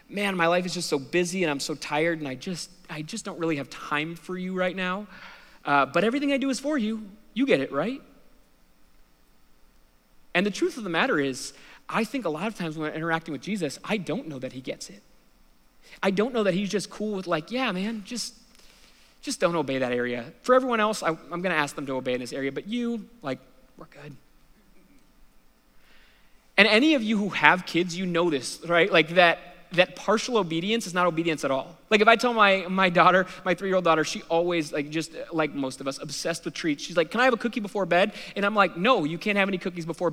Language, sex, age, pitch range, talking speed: English, male, 30-49, 150-210 Hz, 235 wpm